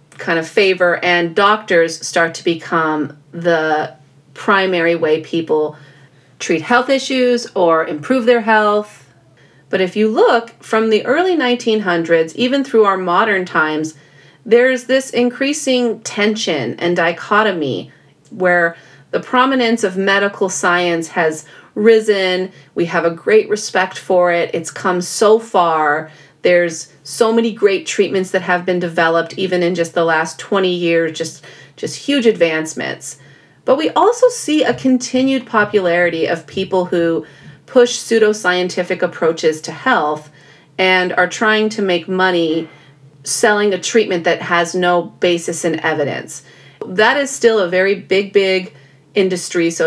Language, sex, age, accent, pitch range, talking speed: English, female, 40-59, American, 160-210 Hz, 140 wpm